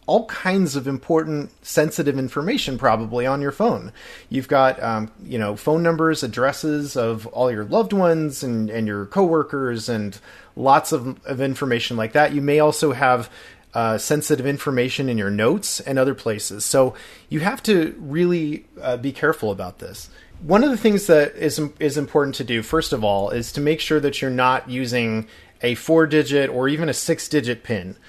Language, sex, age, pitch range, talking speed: English, male, 30-49, 120-160 Hz, 185 wpm